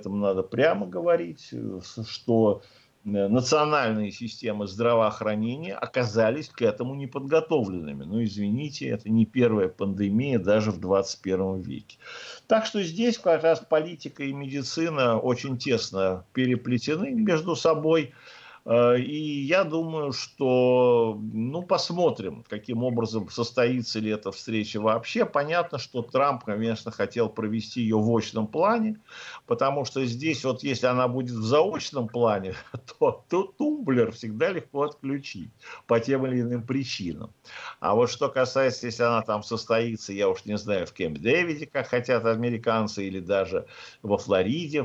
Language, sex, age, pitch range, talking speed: Russian, male, 50-69, 110-145 Hz, 135 wpm